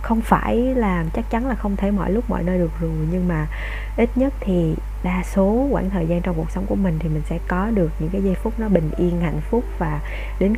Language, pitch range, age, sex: Vietnamese, 165-210 Hz, 20-39, female